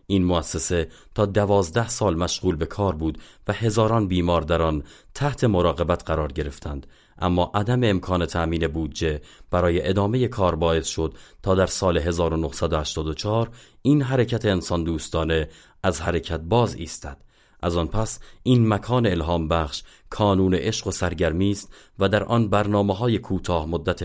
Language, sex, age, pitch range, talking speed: Persian, male, 30-49, 80-105 Hz, 145 wpm